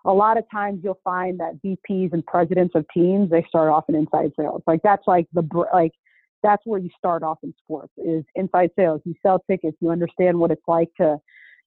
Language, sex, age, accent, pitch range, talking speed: English, female, 30-49, American, 165-200 Hz, 220 wpm